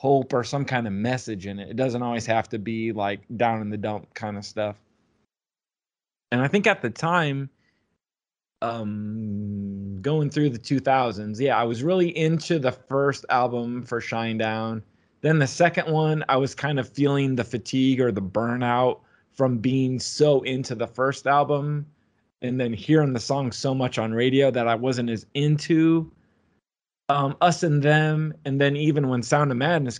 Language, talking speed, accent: English, 180 wpm, American